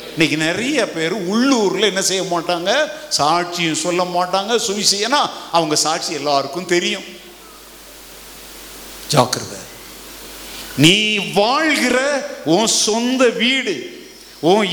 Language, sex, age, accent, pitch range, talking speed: English, male, 50-69, Indian, 225-310 Hz, 75 wpm